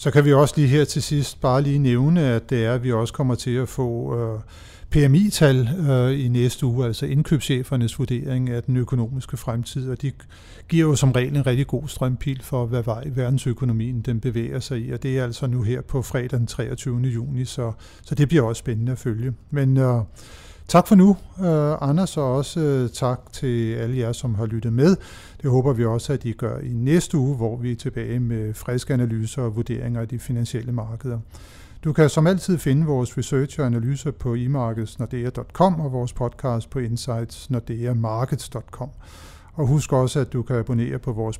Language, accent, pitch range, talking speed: Danish, native, 120-140 Hz, 185 wpm